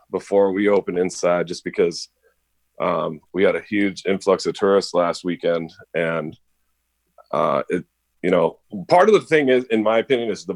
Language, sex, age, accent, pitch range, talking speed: English, male, 30-49, American, 90-130 Hz, 175 wpm